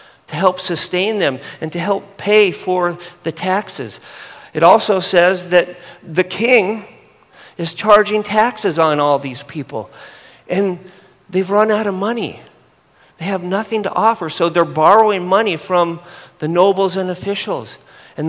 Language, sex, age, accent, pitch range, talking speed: English, male, 50-69, American, 170-200 Hz, 150 wpm